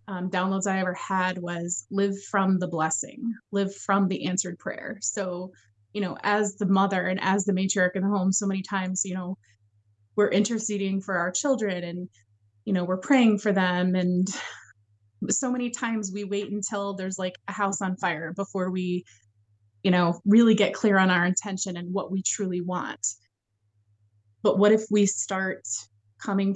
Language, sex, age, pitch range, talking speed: English, female, 20-39, 160-200 Hz, 180 wpm